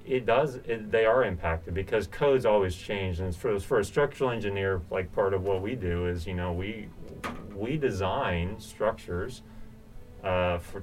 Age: 30-49